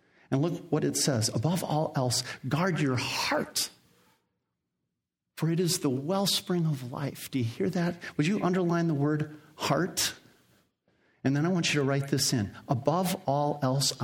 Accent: American